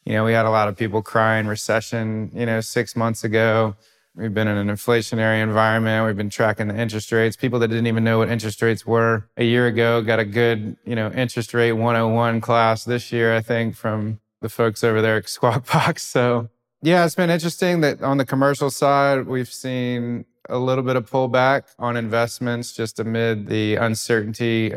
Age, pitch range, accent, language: 20-39, 110-125 Hz, American, English